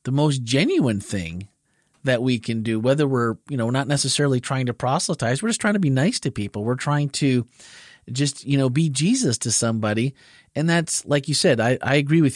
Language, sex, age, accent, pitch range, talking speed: English, male, 40-59, American, 115-150 Hz, 220 wpm